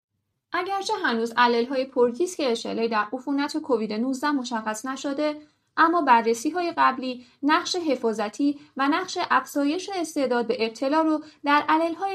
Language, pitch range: Persian, 240-320 Hz